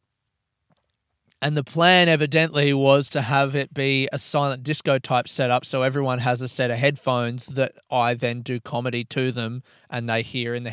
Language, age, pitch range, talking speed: English, 20-39, 120-145 Hz, 185 wpm